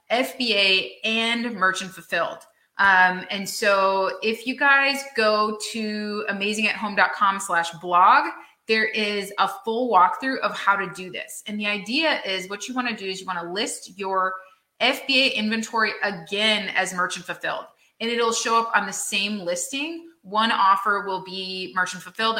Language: English